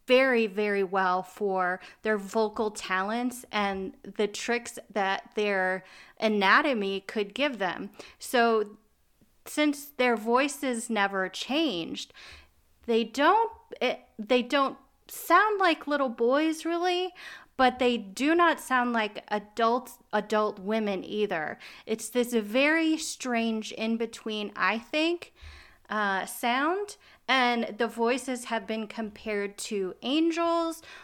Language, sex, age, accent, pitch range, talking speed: English, female, 30-49, American, 200-255 Hz, 115 wpm